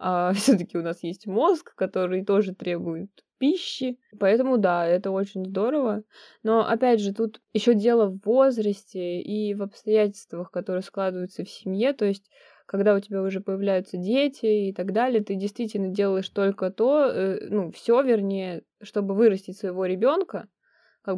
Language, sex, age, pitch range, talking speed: Russian, female, 20-39, 190-225 Hz, 160 wpm